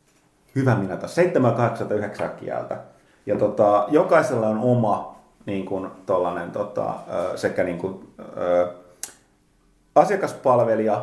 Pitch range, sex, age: 100-125 Hz, male, 30-49